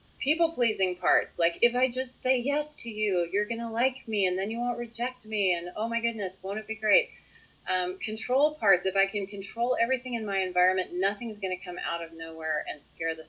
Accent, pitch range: American, 155-205 Hz